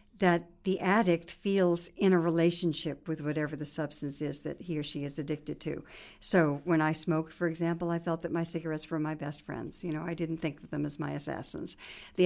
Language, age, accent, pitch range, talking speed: English, 60-79, American, 155-185 Hz, 220 wpm